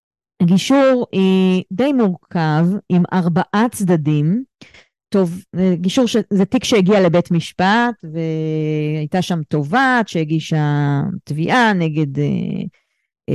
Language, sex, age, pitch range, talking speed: Hebrew, female, 30-49, 160-200 Hz, 90 wpm